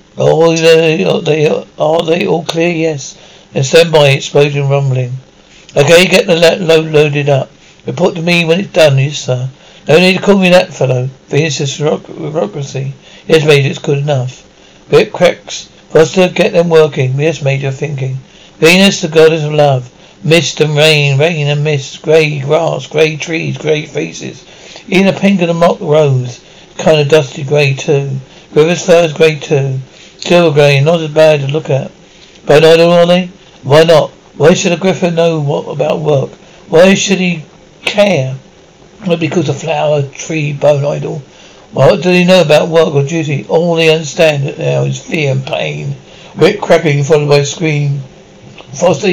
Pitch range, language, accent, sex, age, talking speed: 145-175 Hz, English, British, male, 60-79, 175 wpm